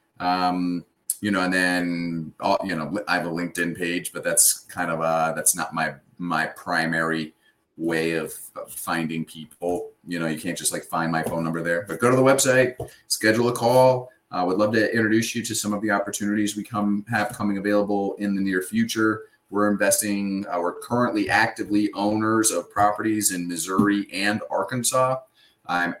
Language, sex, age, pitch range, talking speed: English, male, 30-49, 90-110 Hz, 180 wpm